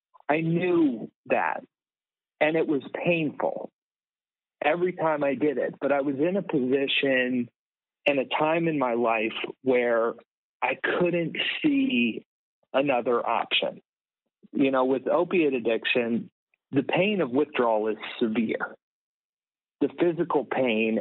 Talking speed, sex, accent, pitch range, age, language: 125 wpm, male, American, 125-155 Hz, 40-59, English